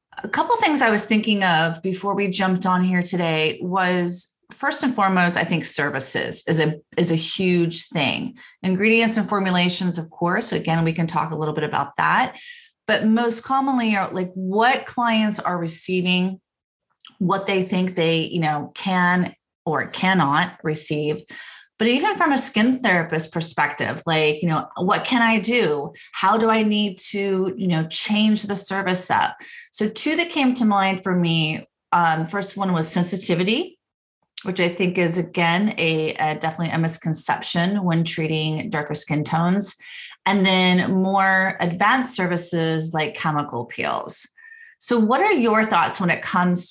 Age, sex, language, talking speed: 30-49, female, English, 165 wpm